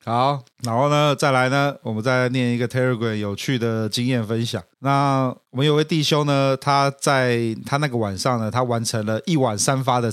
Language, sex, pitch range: Chinese, male, 115-145 Hz